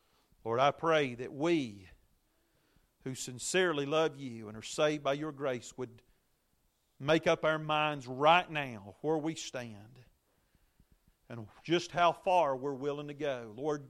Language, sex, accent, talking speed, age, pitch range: English, male, American, 145 wpm, 40-59, 115-155 Hz